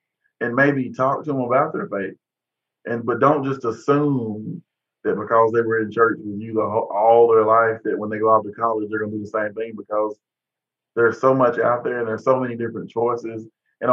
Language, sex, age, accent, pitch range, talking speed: English, male, 30-49, American, 110-125 Hz, 220 wpm